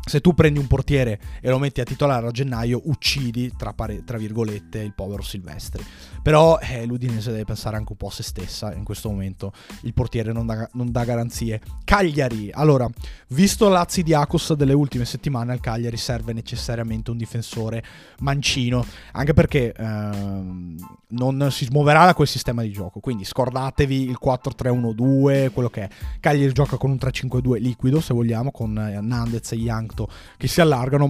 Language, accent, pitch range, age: Italian, native, 110-140 Hz, 20-39